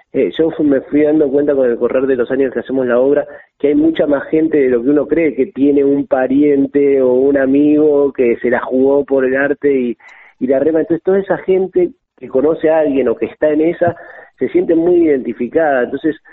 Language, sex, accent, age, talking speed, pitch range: Spanish, male, Argentinian, 40-59, 225 wpm, 120-150 Hz